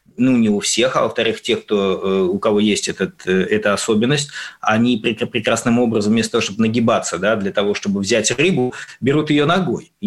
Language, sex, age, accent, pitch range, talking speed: Russian, male, 20-39, native, 120-180 Hz, 190 wpm